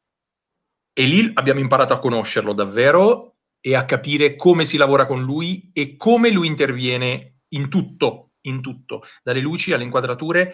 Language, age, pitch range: Italian, 40-59, 125-175 Hz